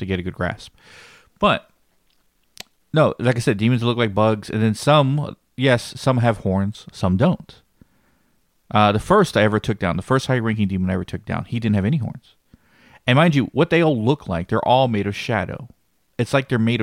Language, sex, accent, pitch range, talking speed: English, male, American, 95-120 Hz, 215 wpm